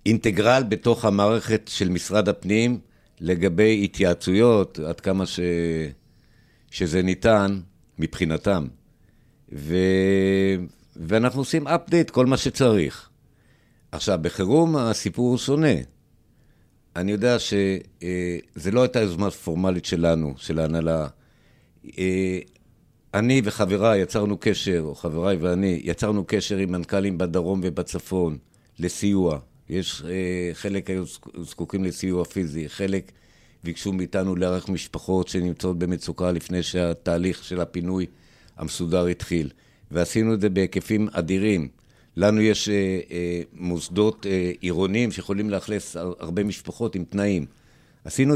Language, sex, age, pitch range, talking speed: Hebrew, male, 60-79, 85-105 Hz, 110 wpm